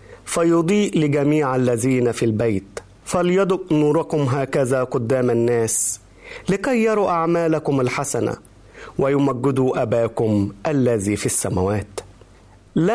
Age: 40-59